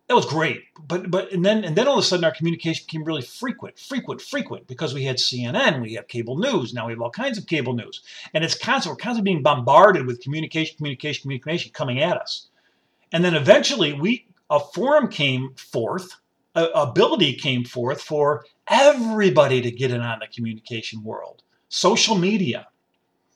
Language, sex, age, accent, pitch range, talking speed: English, male, 50-69, American, 125-185 Hz, 190 wpm